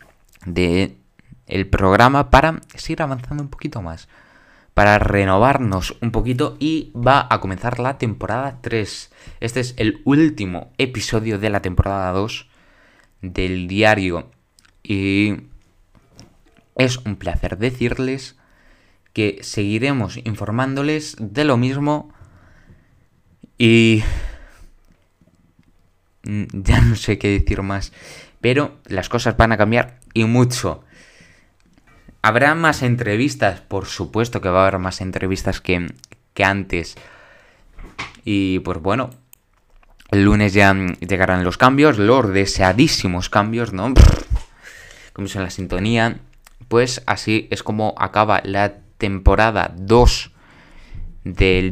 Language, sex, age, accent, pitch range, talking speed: Spanish, male, 20-39, Spanish, 95-120 Hz, 115 wpm